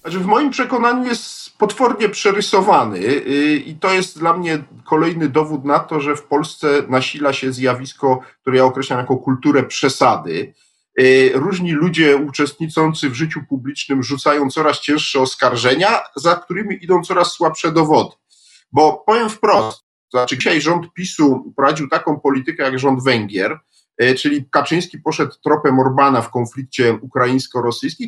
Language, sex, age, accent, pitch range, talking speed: Polish, male, 40-59, native, 135-190 Hz, 135 wpm